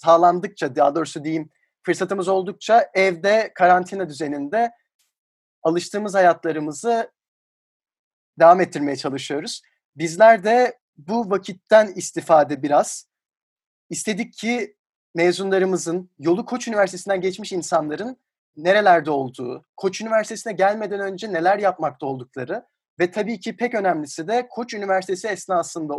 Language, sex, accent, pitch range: Turkish, male, native, 165-215 Hz